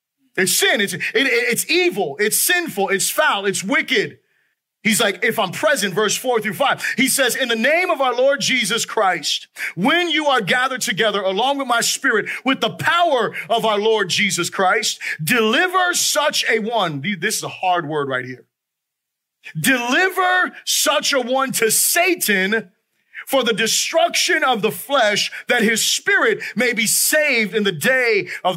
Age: 30-49